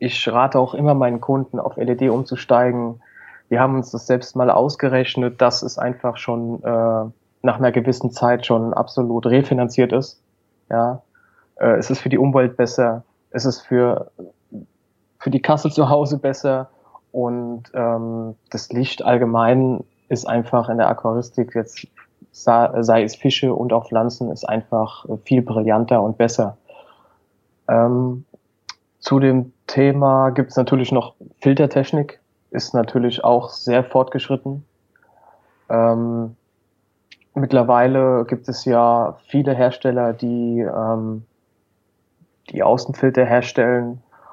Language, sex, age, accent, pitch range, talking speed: German, male, 20-39, German, 115-130 Hz, 125 wpm